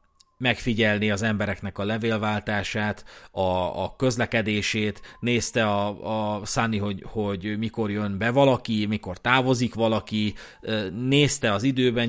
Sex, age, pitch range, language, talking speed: male, 30-49, 105-125 Hz, Hungarian, 120 wpm